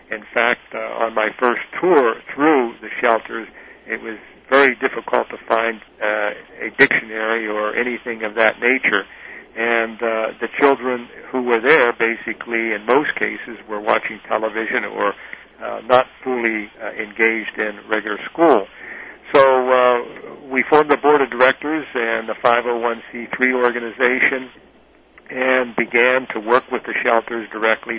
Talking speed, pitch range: 145 wpm, 110-125 Hz